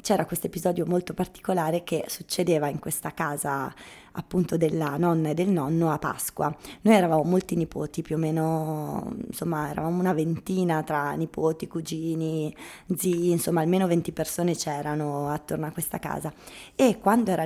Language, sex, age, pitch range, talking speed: Italian, female, 20-39, 165-210 Hz, 155 wpm